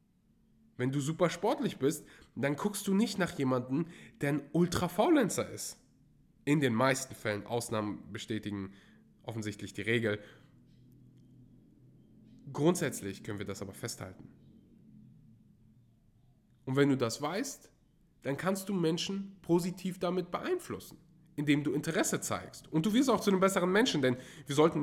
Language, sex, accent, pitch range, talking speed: German, male, German, 115-175 Hz, 140 wpm